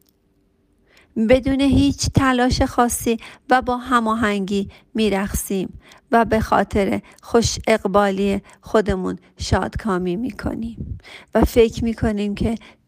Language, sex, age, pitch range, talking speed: Persian, female, 50-69, 195-235 Hz, 100 wpm